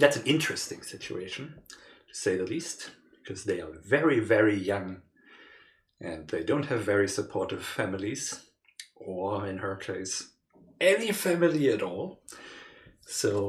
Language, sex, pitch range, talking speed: English, male, 100-145 Hz, 135 wpm